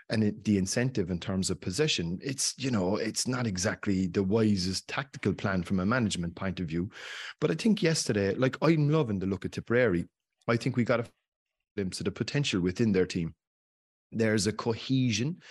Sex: male